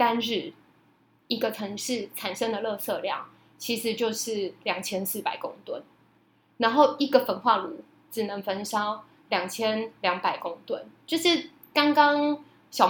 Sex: female